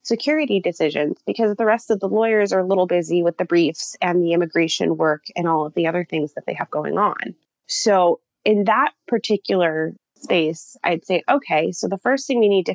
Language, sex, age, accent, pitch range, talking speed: English, female, 20-39, American, 165-200 Hz, 210 wpm